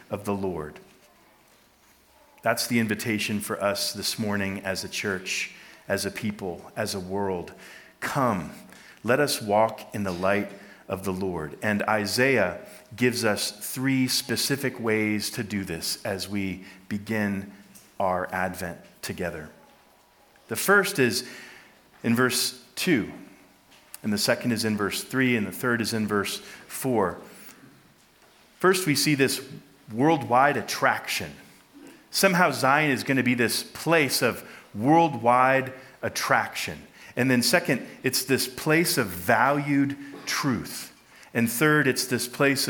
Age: 40-59